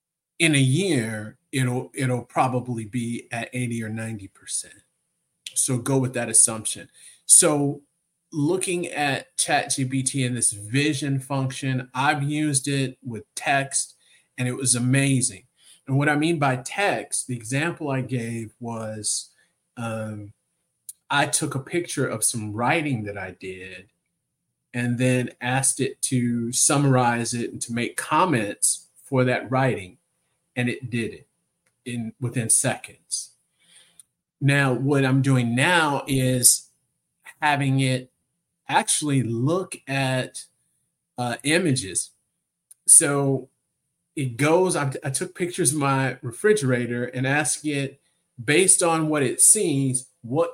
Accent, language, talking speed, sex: American, English, 130 wpm, male